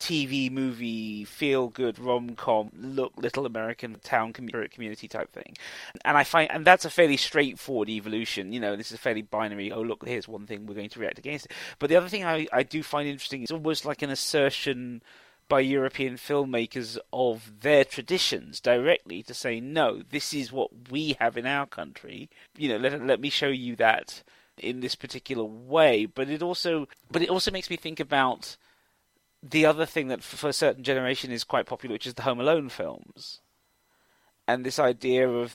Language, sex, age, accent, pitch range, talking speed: English, male, 30-49, British, 120-150 Hz, 190 wpm